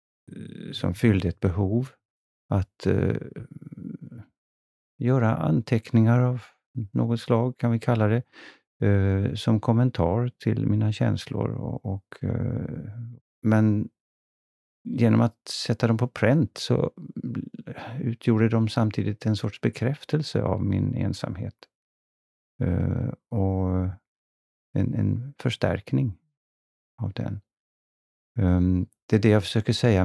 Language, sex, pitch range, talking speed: Swedish, male, 90-120 Hz, 100 wpm